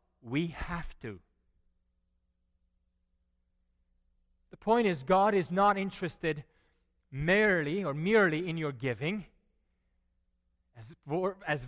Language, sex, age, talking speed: English, male, 30-49, 90 wpm